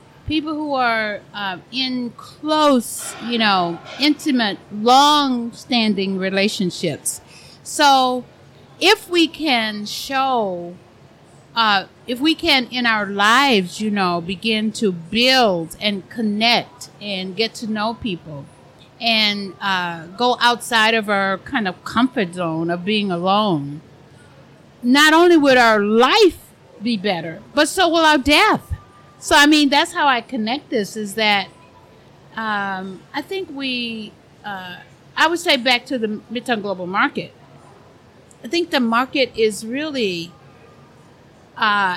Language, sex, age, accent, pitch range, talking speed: English, female, 50-69, American, 185-255 Hz, 130 wpm